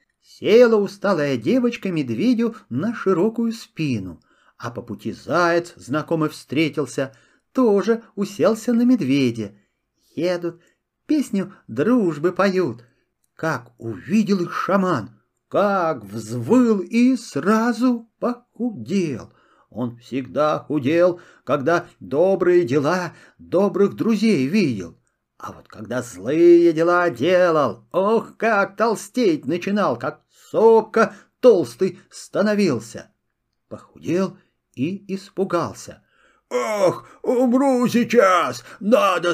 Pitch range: 165-240 Hz